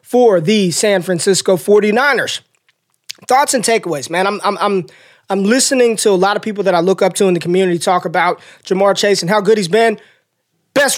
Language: English